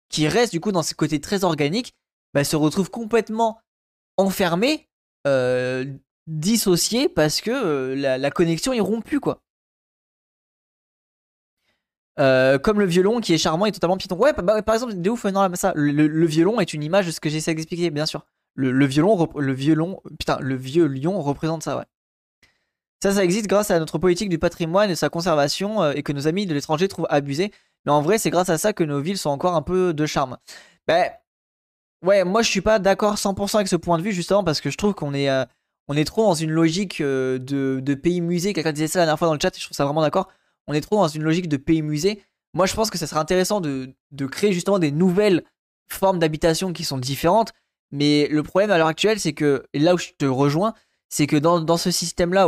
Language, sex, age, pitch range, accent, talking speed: French, male, 20-39, 150-195 Hz, French, 230 wpm